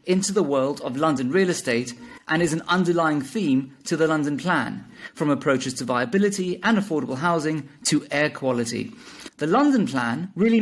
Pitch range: 145-210 Hz